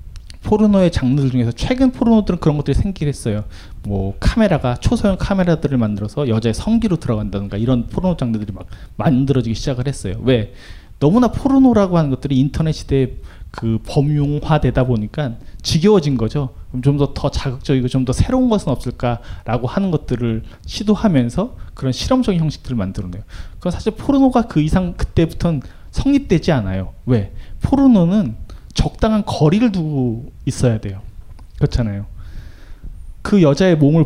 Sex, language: male, Korean